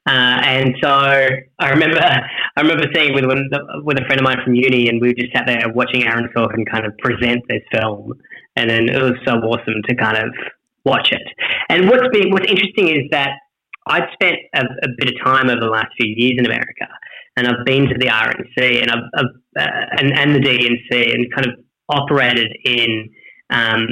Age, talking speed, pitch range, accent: 10-29, 205 wpm, 115-135 Hz, Australian